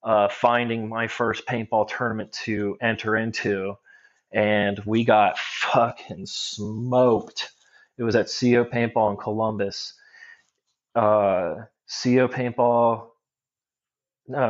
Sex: male